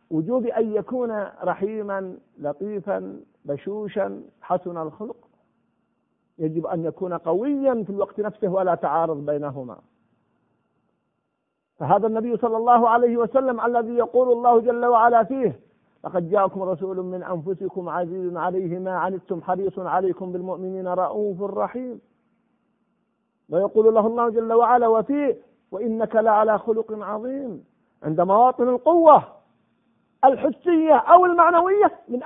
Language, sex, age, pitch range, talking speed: Arabic, male, 50-69, 185-260 Hz, 115 wpm